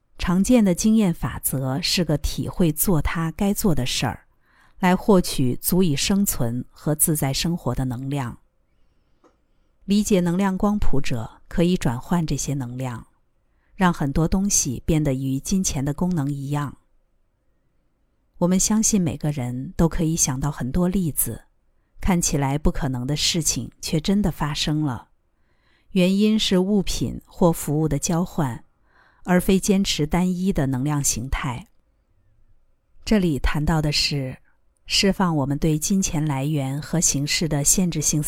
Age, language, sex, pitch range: 50-69, Chinese, female, 135-180 Hz